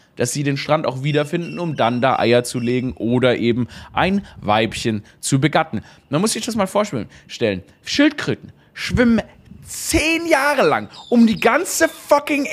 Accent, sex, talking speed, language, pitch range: German, male, 160 wpm, German, 150-250 Hz